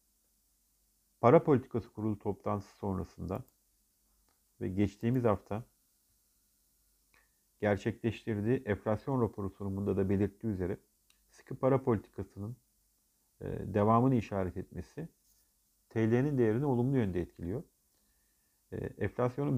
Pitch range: 95-125 Hz